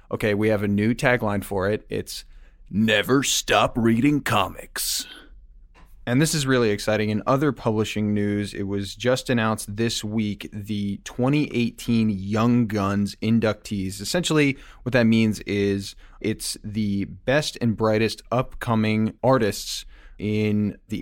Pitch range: 100-120 Hz